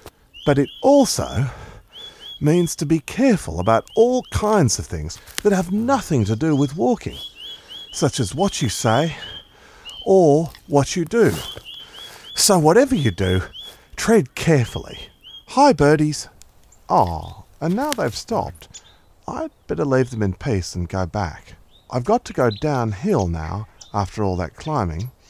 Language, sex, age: Korean, male, 40-59